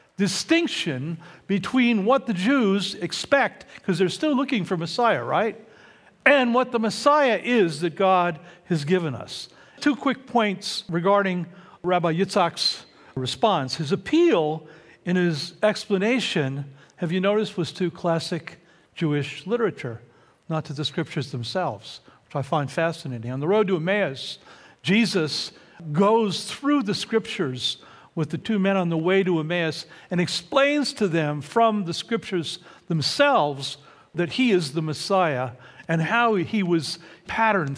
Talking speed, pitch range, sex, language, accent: 140 wpm, 160-215 Hz, male, English, American